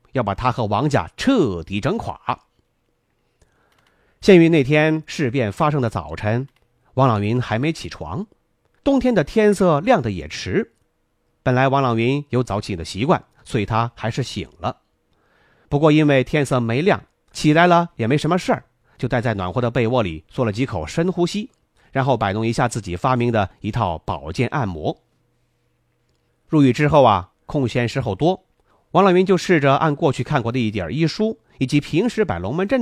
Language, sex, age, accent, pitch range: Chinese, male, 30-49, native, 115-160 Hz